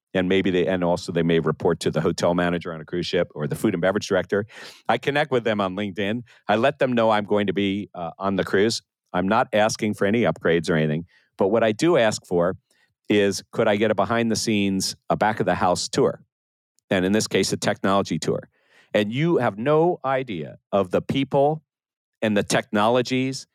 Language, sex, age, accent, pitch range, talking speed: English, male, 50-69, American, 95-125 Hz, 205 wpm